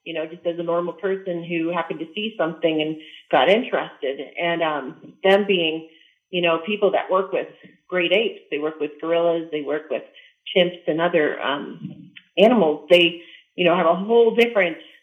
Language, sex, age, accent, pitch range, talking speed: English, female, 40-59, American, 160-190 Hz, 185 wpm